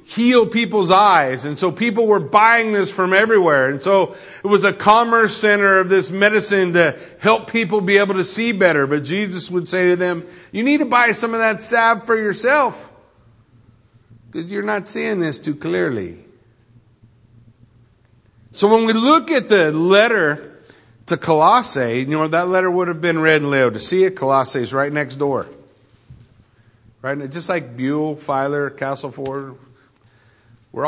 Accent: American